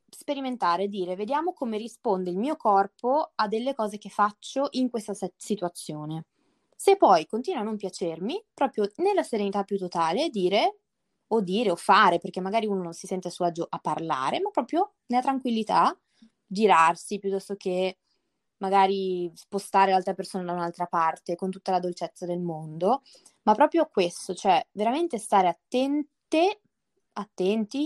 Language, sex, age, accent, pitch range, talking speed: Italian, female, 20-39, native, 180-225 Hz, 155 wpm